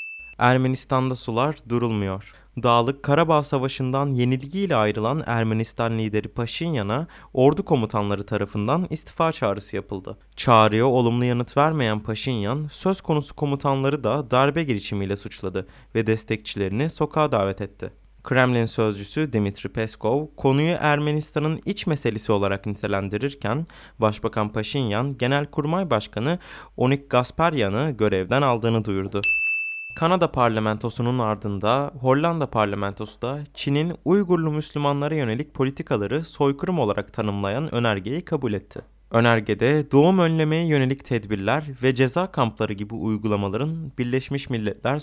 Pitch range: 110-150 Hz